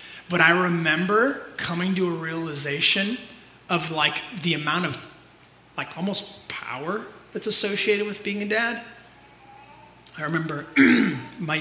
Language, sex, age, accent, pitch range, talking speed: English, male, 30-49, American, 150-200 Hz, 125 wpm